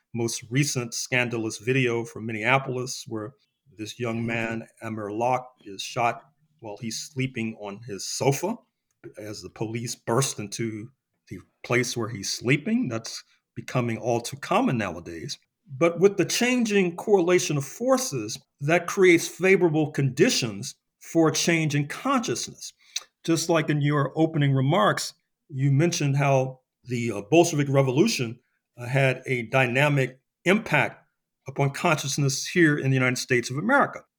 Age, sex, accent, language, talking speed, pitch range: 40-59, male, American, English, 135 wpm, 120-145 Hz